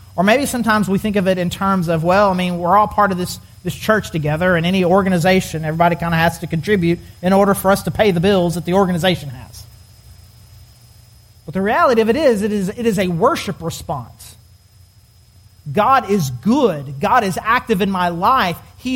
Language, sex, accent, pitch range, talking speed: English, male, American, 140-200 Hz, 205 wpm